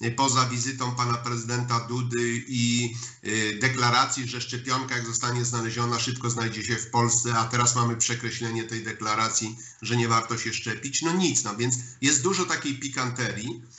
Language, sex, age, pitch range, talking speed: Polish, male, 50-69, 115-130 Hz, 155 wpm